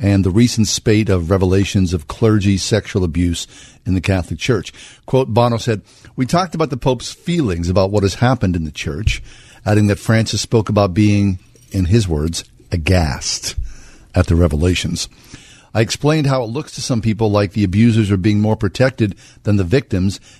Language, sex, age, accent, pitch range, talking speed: English, male, 50-69, American, 95-115 Hz, 180 wpm